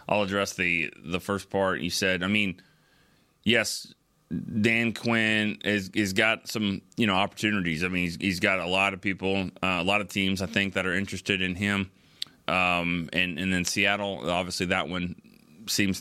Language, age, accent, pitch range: English, 30-49, American, 85-100 Hz